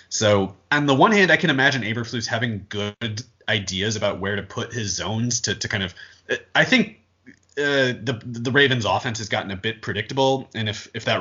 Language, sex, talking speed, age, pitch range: English, male, 210 wpm, 30-49, 100-125 Hz